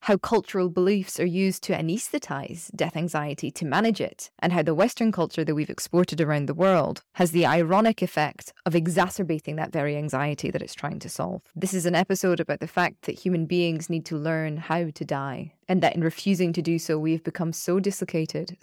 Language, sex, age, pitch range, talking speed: English, female, 20-39, 160-195 Hz, 205 wpm